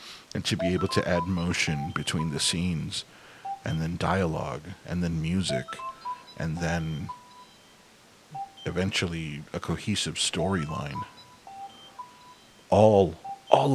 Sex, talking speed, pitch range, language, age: male, 105 wpm, 80-110 Hz, English, 40-59